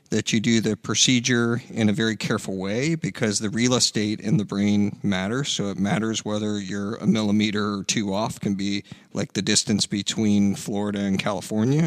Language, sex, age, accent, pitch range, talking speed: English, male, 50-69, American, 110-135 Hz, 185 wpm